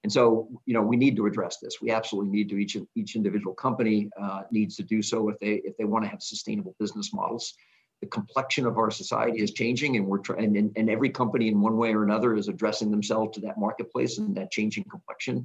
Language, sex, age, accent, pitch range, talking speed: English, male, 50-69, American, 105-125 Hz, 235 wpm